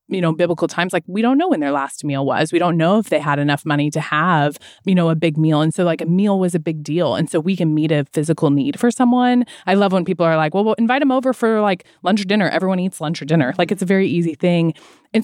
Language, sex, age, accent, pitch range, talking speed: English, female, 20-39, American, 155-215 Hz, 295 wpm